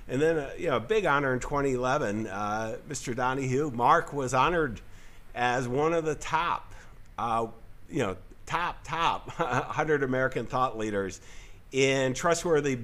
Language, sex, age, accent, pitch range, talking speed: English, male, 50-69, American, 110-145 Hz, 150 wpm